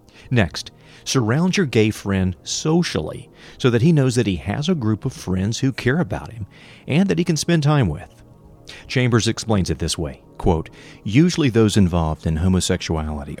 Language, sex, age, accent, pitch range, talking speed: English, male, 40-59, American, 90-135 Hz, 175 wpm